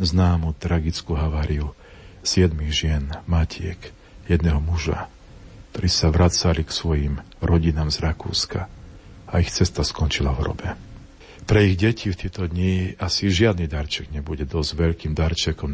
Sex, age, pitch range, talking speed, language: male, 50-69, 80-95 Hz, 135 wpm, Slovak